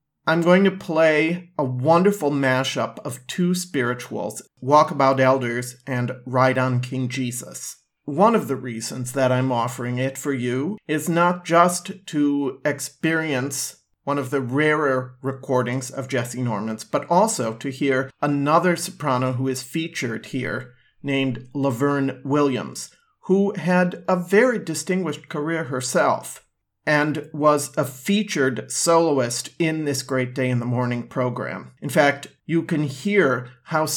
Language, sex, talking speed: English, male, 140 wpm